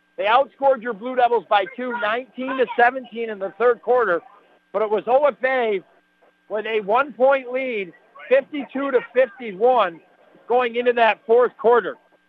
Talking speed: 125 wpm